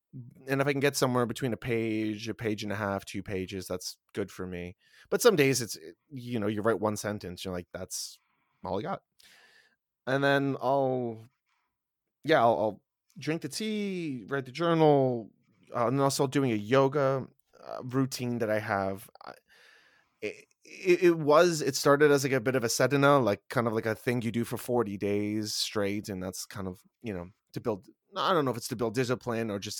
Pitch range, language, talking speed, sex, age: 110-140 Hz, English, 205 wpm, male, 20-39